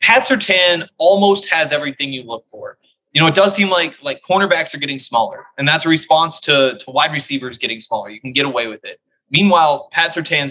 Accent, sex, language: American, male, English